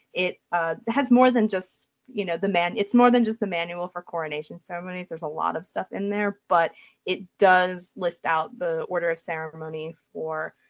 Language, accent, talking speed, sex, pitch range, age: English, American, 200 wpm, female, 170-220 Hz, 20-39